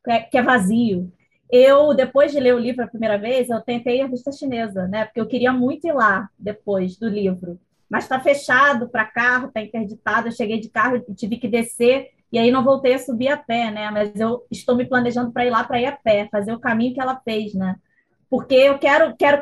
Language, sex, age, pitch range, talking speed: Portuguese, female, 20-39, 215-260 Hz, 230 wpm